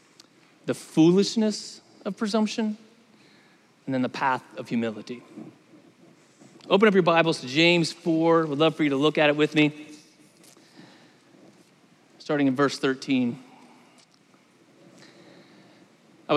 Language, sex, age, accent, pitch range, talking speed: English, male, 30-49, American, 150-230 Hz, 115 wpm